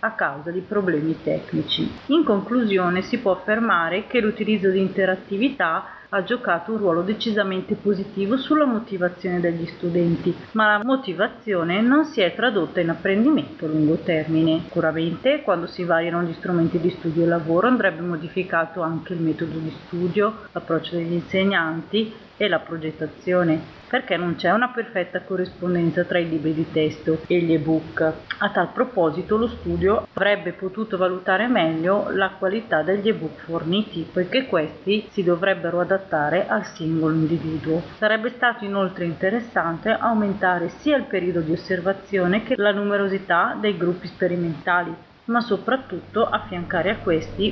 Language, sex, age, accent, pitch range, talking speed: Italian, female, 30-49, native, 170-210 Hz, 145 wpm